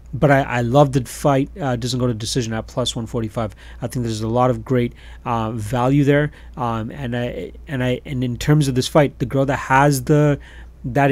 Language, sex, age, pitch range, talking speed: English, male, 30-49, 115-140 Hz, 230 wpm